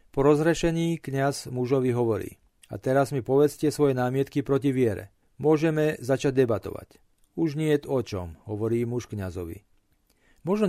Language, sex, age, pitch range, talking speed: Slovak, male, 40-59, 120-150 Hz, 135 wpm